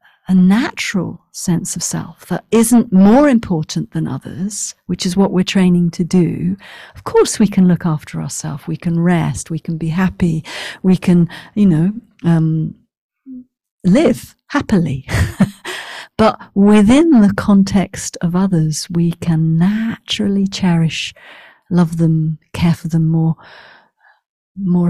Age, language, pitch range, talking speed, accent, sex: 50-69, English, 165-200 Hz, 135 wpm, British, female